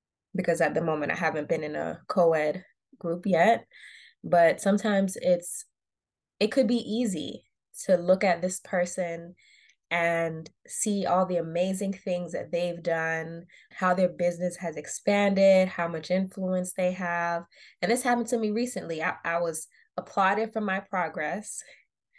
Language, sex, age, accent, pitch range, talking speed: English, female, 20-39, American, 170-195 Hz, 150 wpm